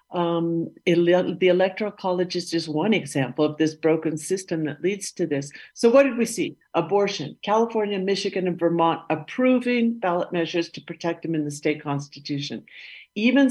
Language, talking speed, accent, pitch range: English, 165 wpm, American, 160-200 Hz